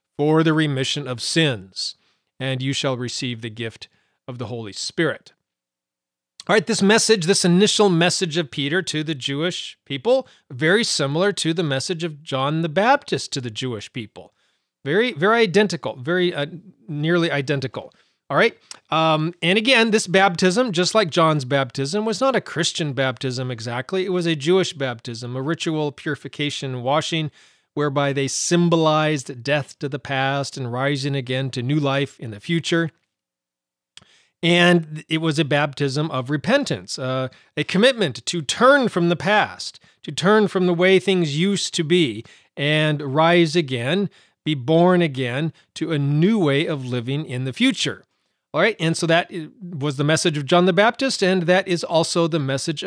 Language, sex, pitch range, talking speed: English, male, 135-180 Hz, 165 wpm